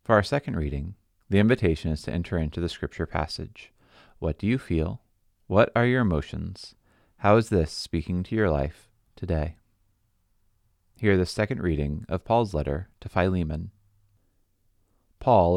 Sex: male